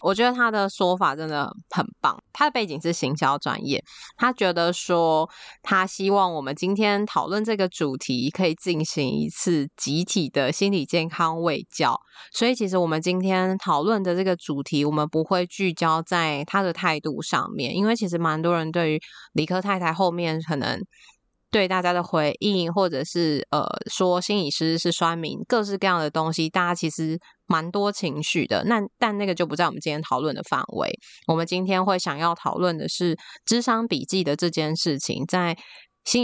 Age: 20-39